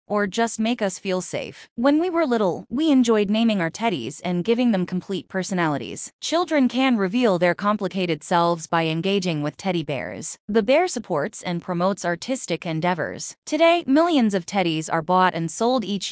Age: 20-39